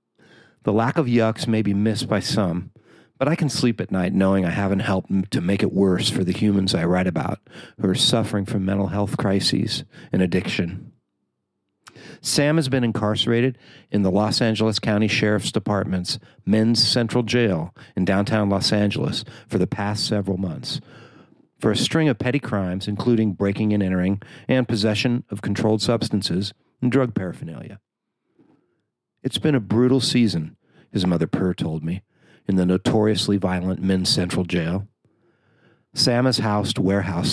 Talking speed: 160 wpm